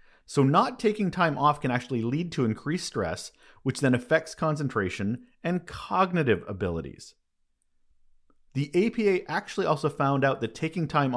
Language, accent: English, American